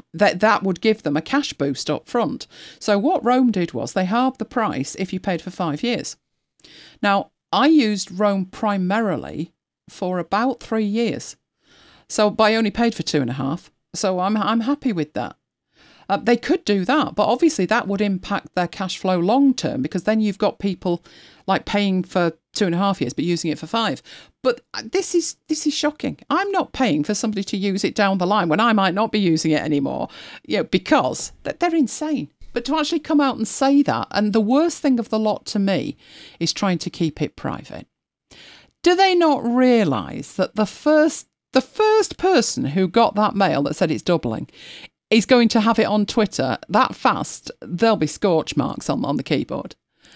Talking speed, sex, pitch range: 200 wpm, female, 185-255 Hz